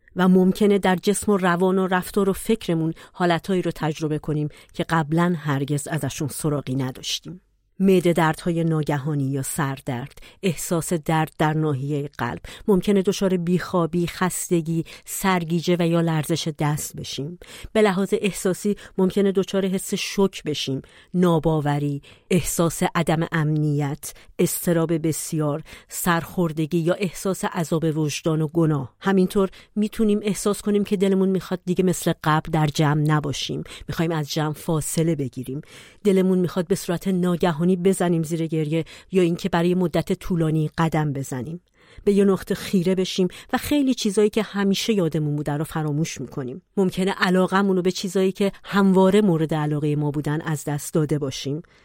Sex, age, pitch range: female, 40-59, 155-190 Hz